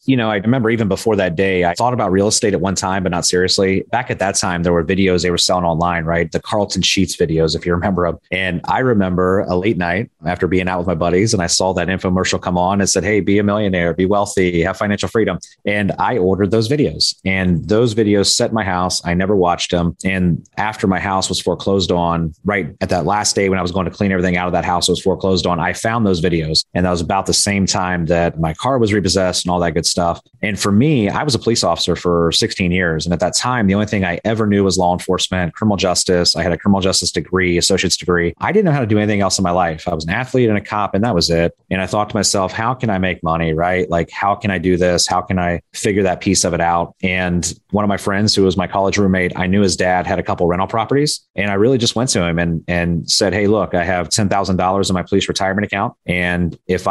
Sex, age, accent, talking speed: male, 30-49, American, 270 wpm